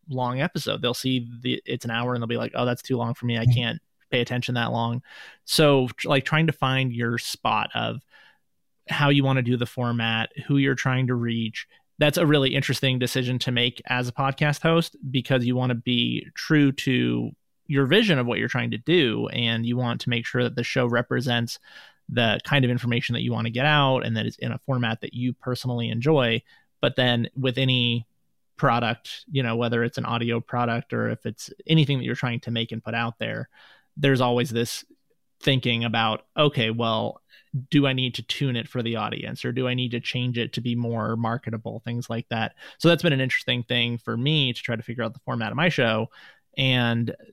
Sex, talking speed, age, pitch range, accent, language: male, 220 wpm, 30-49, 115-135 Hz, American, English